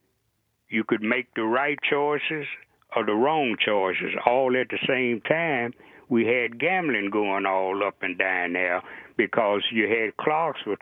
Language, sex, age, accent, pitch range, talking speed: English, male, 60-79, American, 110-140 Hz, 155 wpm